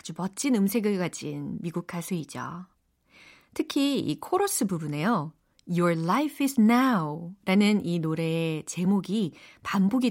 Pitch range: 175-260 Hz